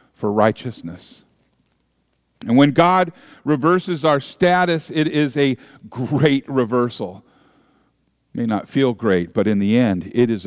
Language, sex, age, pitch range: English, male, 50-69, 125-170 Hz